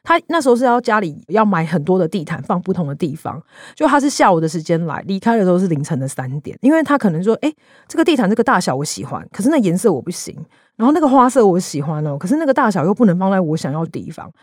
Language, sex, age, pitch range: Chinese, female, 40-59, 170-240 Hz